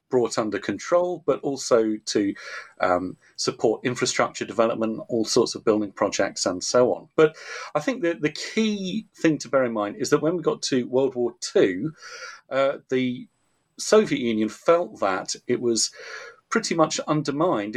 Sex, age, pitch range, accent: male, 40-59, 110-145 Hz, British